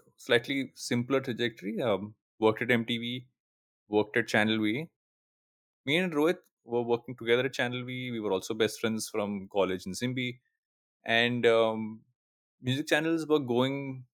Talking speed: 150 wpm